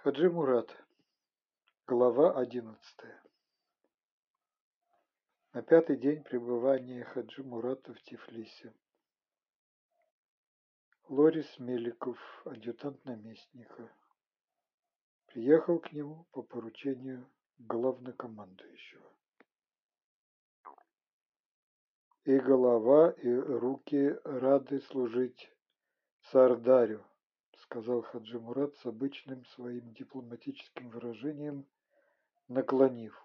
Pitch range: 120-140 Hz